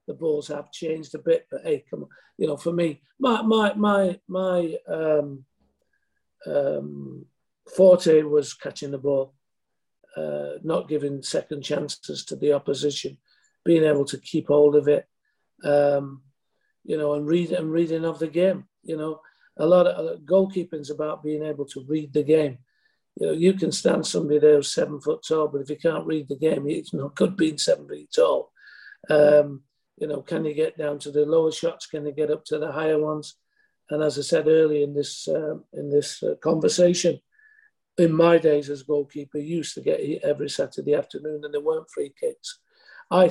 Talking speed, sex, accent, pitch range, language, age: 195 wpm, male, British, 145-170 Hz, English, 50-69